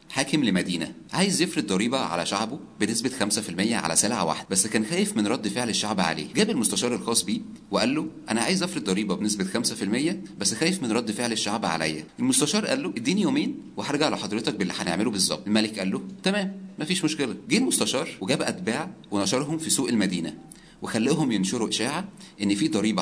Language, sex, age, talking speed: Arabic, male, 30-49, 180 wpm